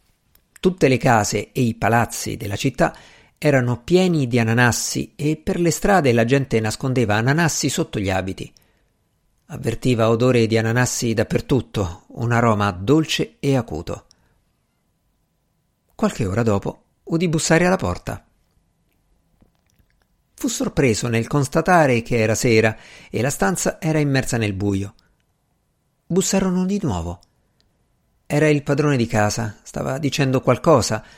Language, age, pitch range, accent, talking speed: Italian, 50-69, 110-155 Hz, native, 125 wpm